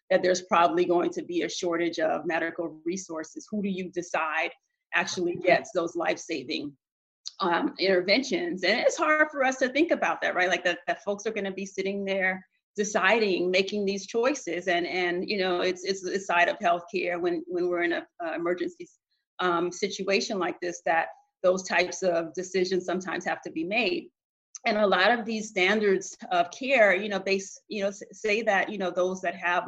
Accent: American